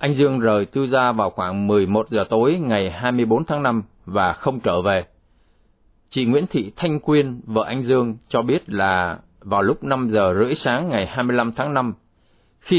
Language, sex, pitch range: Vietnamese, male, 100-125 Hz